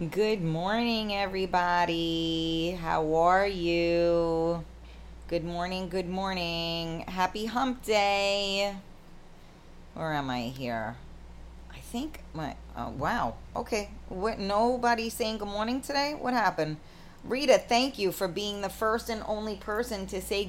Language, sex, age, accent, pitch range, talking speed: English, female, 30-49, American, 155-225 Hz, 125 wpm